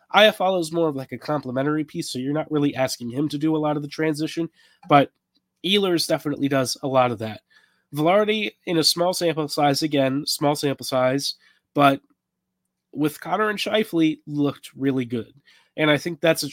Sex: male